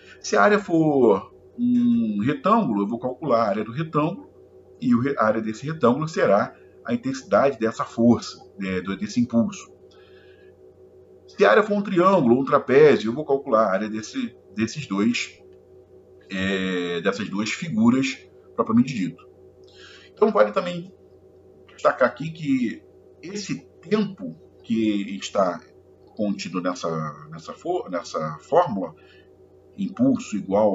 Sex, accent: male, Brazilian